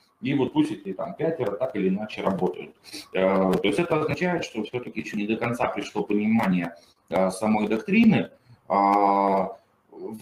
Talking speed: 145 wpm